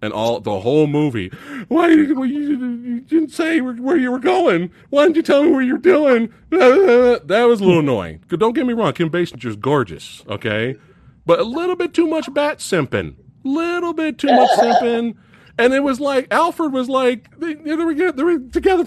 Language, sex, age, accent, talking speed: English, male, 40-59, American, 195 wpm